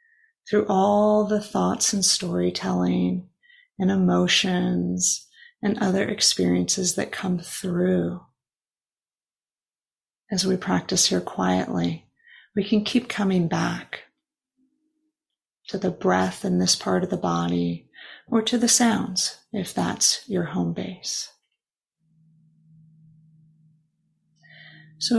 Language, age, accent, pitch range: English, 30-49, American, 160-230 Hz